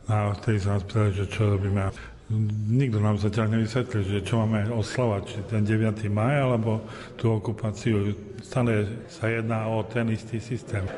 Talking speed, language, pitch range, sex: 160 wpm, Slovak, 100-115 Hz, male